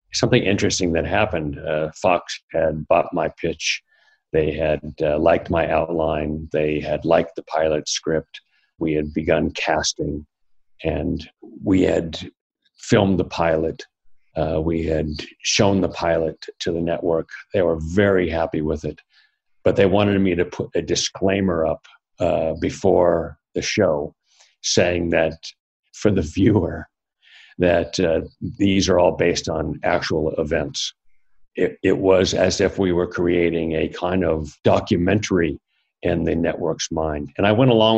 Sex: male